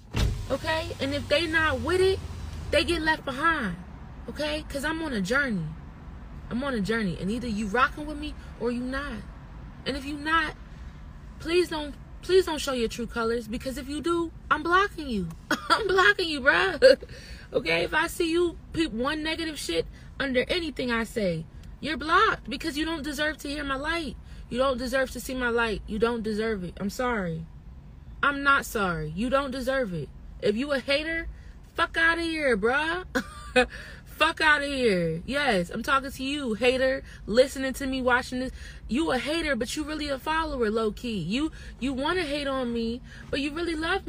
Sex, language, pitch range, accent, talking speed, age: female, English, 235-330 Hz, American, 190 wpm, 20-39